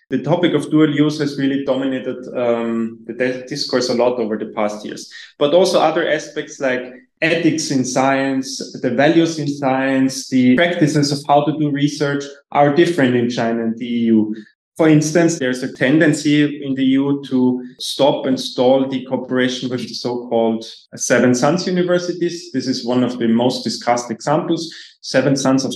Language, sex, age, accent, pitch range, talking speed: Finnish, male, 20-39, German, 125-145 Hz, 175 wpm